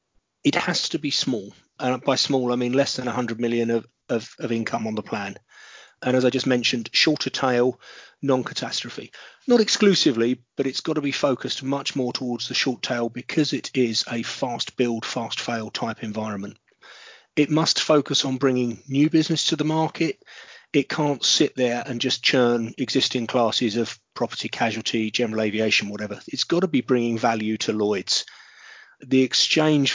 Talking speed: 175 wpm